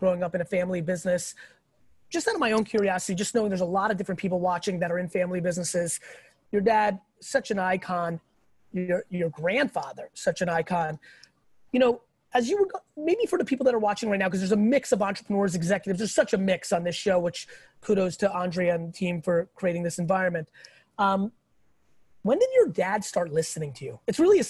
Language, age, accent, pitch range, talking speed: English, 30-49, American, 185-245 Hz, 215 wpm